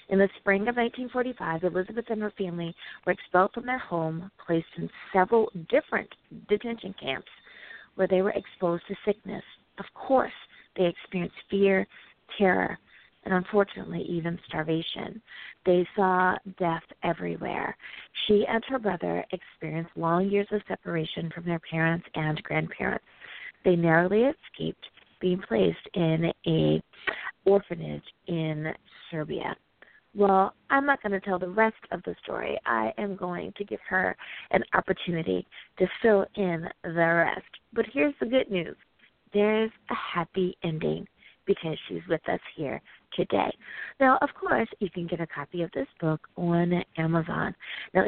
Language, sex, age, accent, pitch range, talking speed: English, female, 40-59, American, 165-205 Hz, 145 wpm